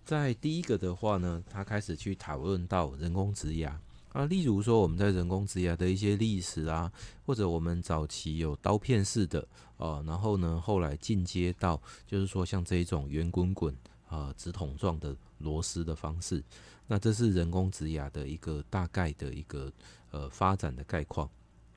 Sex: male